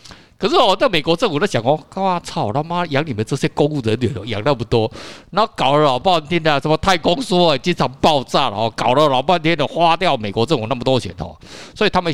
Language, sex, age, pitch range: Chinese, male, 50-69, 110-155 Hz